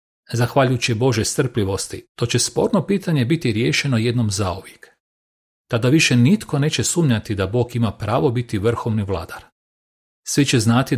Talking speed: 140 wpm